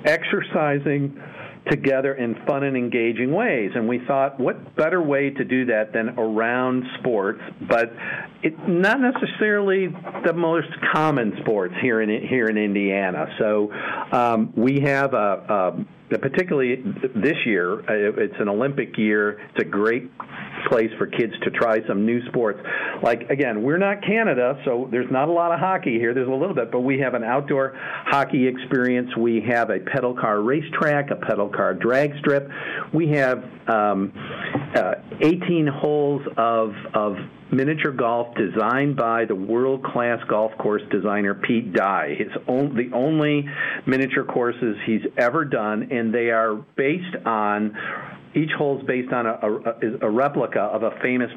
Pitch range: 115-145 Hz